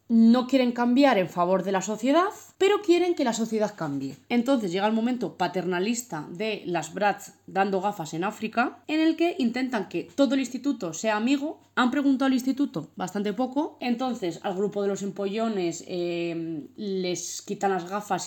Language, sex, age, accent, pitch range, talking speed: Spanish, female, 20-39, Spanish, 175-255 Hz, 175 wpm